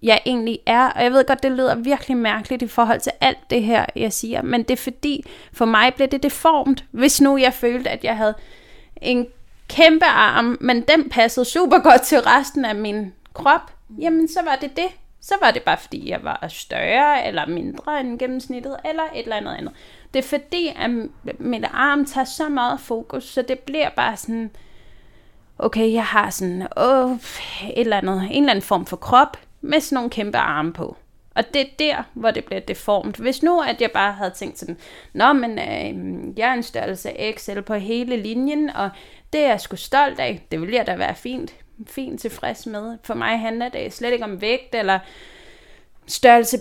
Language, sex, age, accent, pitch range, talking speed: Danish, female, 20-39, native, 225-285 Hz, 205 wpm